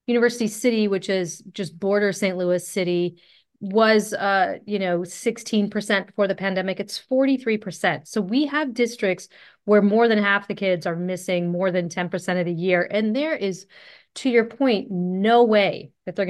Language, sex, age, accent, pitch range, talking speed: English, female, 30-49, American, 185-230 Hz, 175 wpm